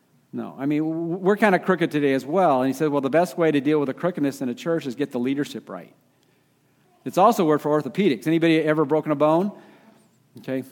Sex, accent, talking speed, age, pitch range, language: male, American, 235 wpm, 50-69, 130-165 Hz, English